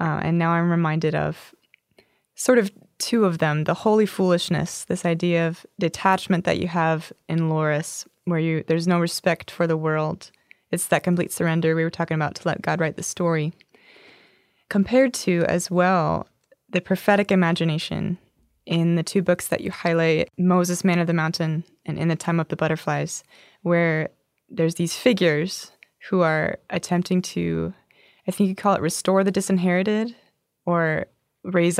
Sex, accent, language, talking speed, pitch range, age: female, American, English, 170 wpm, 165-185 Hz, 20-39